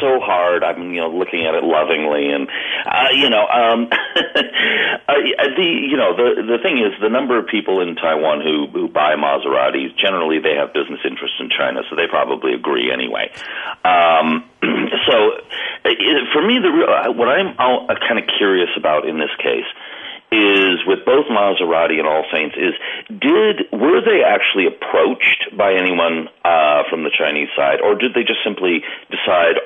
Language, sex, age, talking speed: English, male, 40-59, 170 wpm